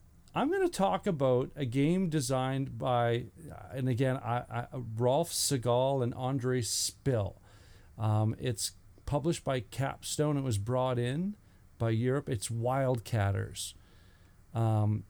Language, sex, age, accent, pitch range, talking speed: English, male, 40-59, American, 110-150 Hz, 125 wpm